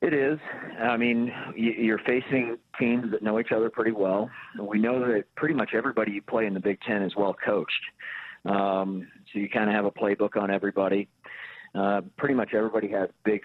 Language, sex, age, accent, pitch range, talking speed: English, male, 40-59, American, 100-110 Hz, 190 wpm